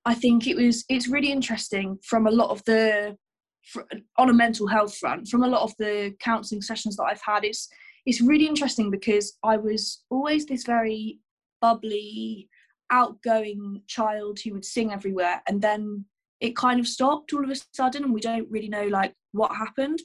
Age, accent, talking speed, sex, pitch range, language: 20-39, British, 185 wpm, female, 205-245 Hz, English